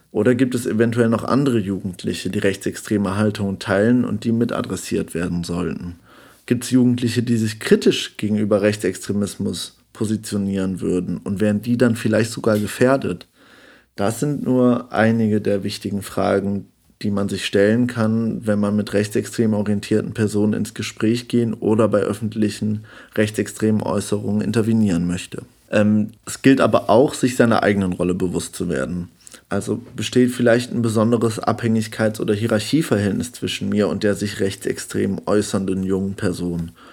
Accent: German